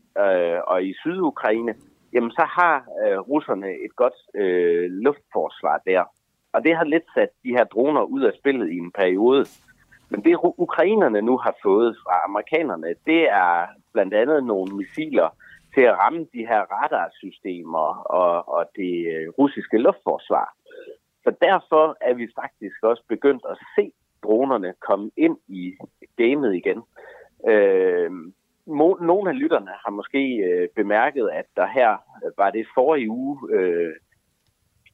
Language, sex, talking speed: Danish, male, 135 wpm